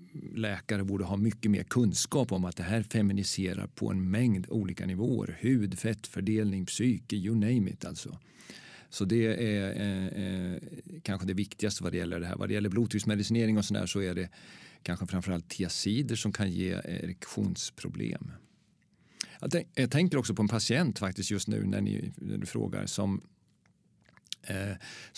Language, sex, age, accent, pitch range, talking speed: Swedish, male, 40-59, native, 100-120 Hz, 165 wpm